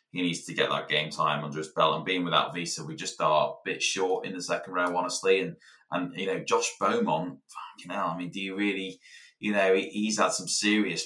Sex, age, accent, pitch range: male, 20-39, British, 80-95 Hz